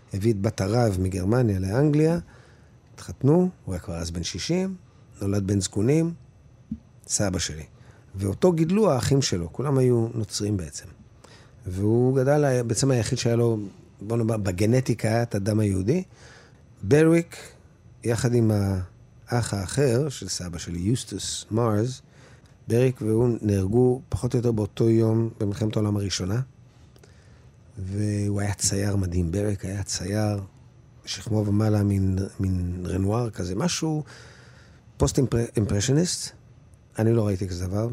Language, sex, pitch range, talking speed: Hebrew, male, 100-125 Hz, 130 wpm